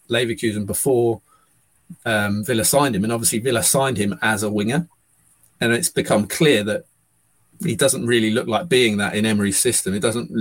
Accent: British